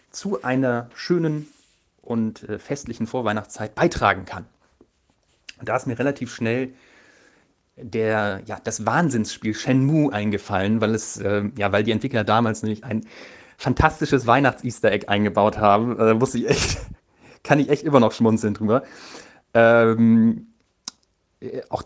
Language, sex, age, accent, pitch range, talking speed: English, male, 30-49, German, 105-120 Hz, 125 wpm